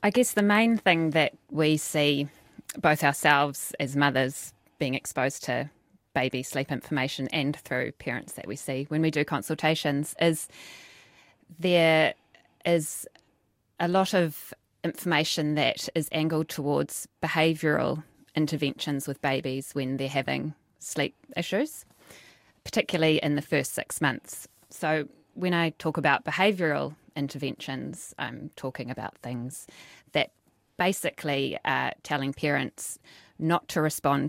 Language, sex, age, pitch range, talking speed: English, female, 20-39, 135-160 Hz, 130 wpm